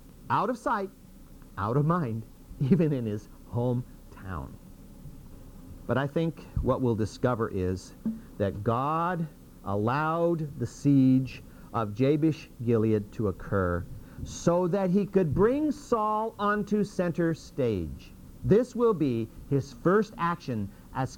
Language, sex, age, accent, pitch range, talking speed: English, male, 50-69, American, 105-170 Hz, 120 wpm